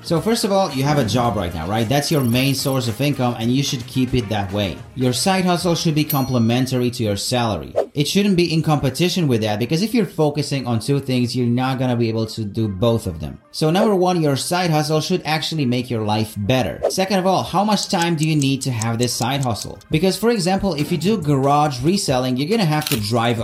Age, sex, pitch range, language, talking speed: 30-49, male, 120-160 Hz, English, 245 wpm